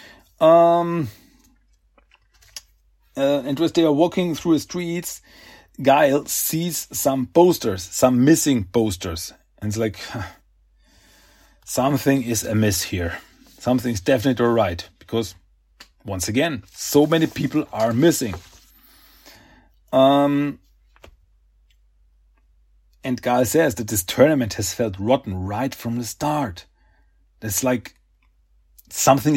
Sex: male